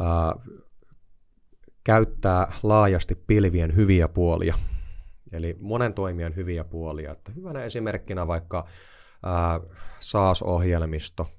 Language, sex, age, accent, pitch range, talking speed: Finnish, male, 30-49, native, 80-95 Hz, 90 wpm